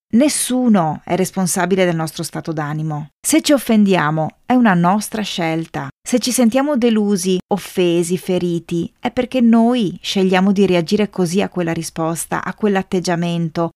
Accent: native